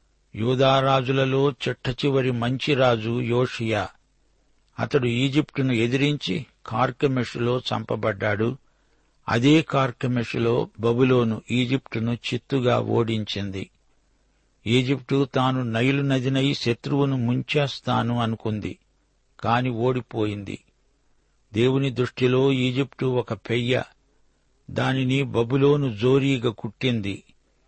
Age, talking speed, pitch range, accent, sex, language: 60-79, 75 wpm, 115-135 Hz, native, male, Telugu